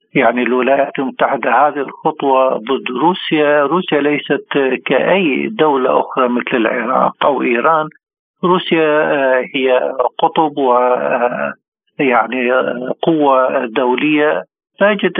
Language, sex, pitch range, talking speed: Arabic, male, 130-160 Hz, 90 wpm